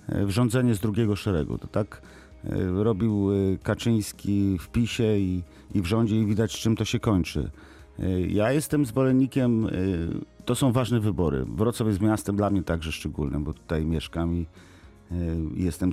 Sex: male